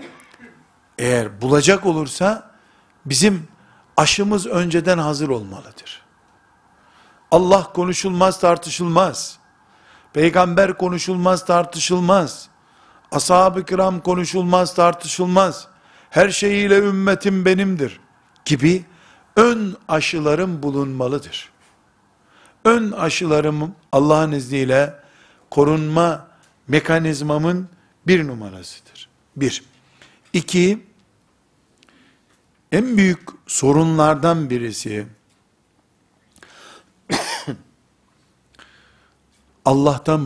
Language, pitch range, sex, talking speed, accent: Turkish, 135-185 Hz, male, 60 wpm, native